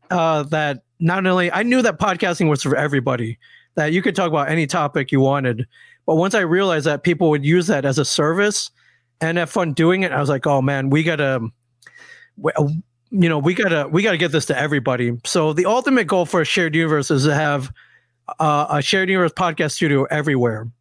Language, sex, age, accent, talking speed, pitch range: English, male, 40-59, American, 210 wpm, 140-170 Hz